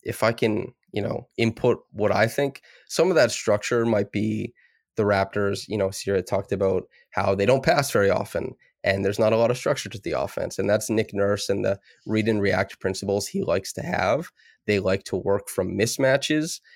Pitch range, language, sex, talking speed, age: 100-115 Hz, English, male, 210 wpm, 20-39